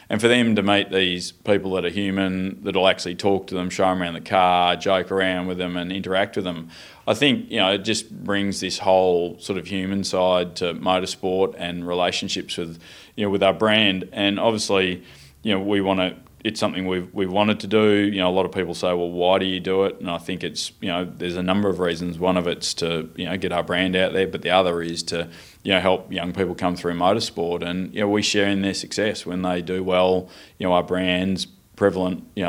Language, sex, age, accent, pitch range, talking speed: English, male, 20-39, Australian, 90-95 Hz, 245 wpm